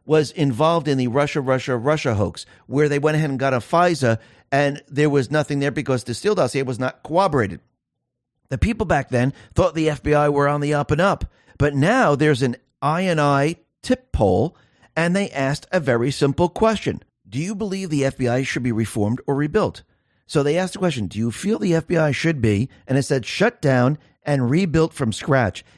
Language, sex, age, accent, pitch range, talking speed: English, male, 50-69, American, 130-175 Hz, 200 wpm